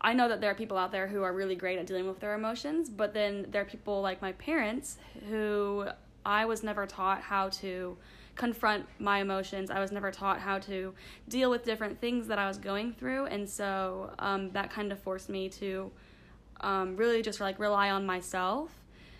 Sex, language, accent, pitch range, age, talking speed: female, English, American, 195-225 Hz, 10-29, 205 wpm